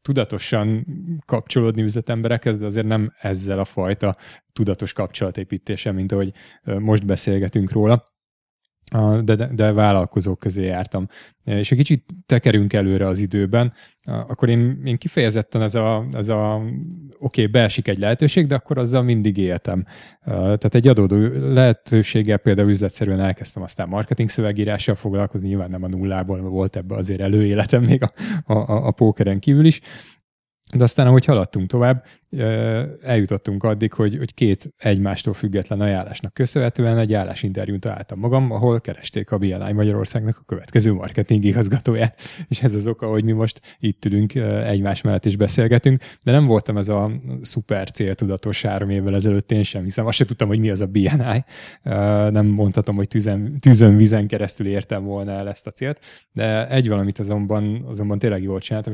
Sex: male